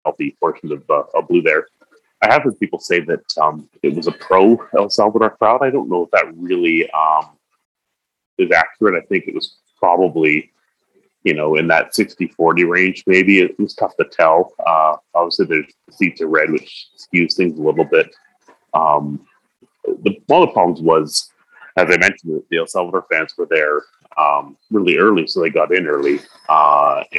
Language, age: English, 30-49